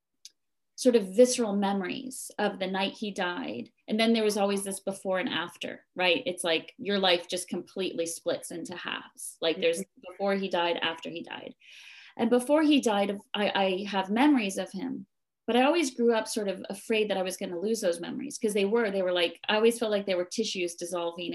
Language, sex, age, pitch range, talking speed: English, female, 30-49, 185-240 Hz, 215 wpm